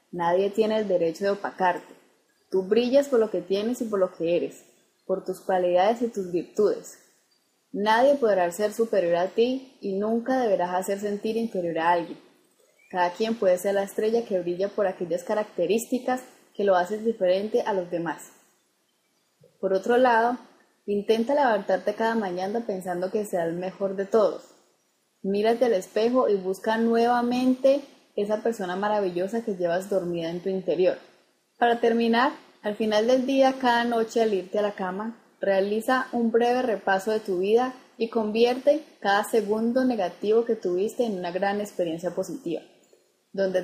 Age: 10-29